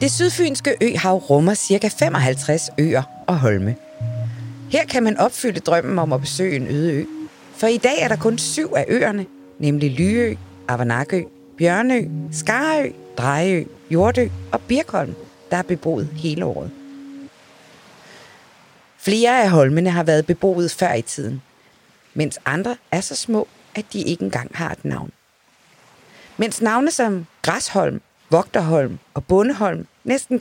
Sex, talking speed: female, 140 wpm